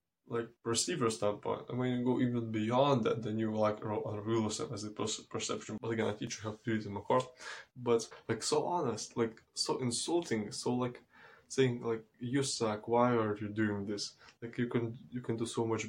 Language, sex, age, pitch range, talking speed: English, male, 20-39, 110-120 Hz, 215 wpm